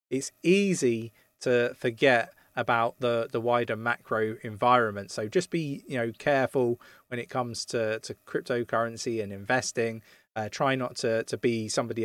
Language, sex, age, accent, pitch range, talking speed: English, male, 20-39, British, 110-130 Hz, 155 wpm